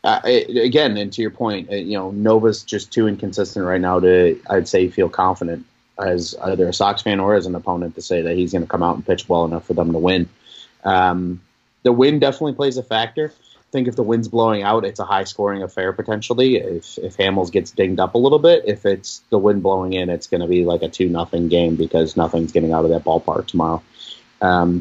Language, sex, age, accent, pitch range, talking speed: English, male, 30-49, American, 90-120 Hz, 235 wpm